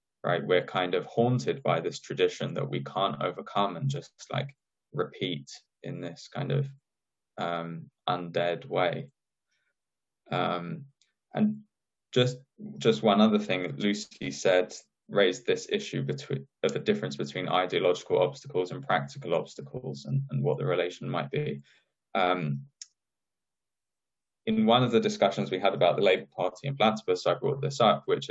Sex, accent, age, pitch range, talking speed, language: male, British, 10-29, 90-140 Hz, 155 wpm, English